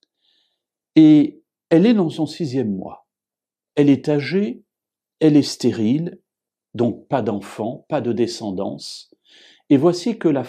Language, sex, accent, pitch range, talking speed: French, male, French, 110-150 Hz, 130 wpm